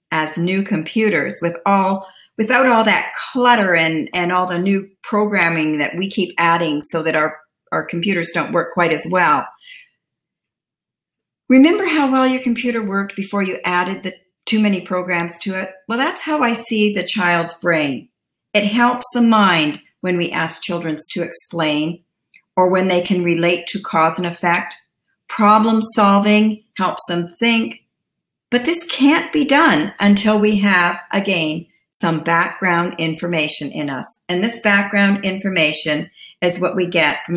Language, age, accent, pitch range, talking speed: English, 50-69, American, 170-210 Hz, 160 wpm